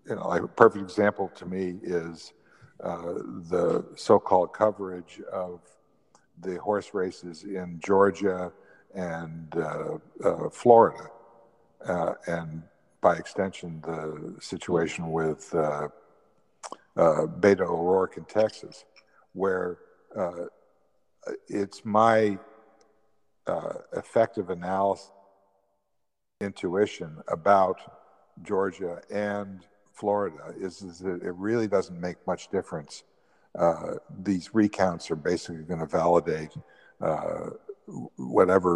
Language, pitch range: English, 85-105 Hz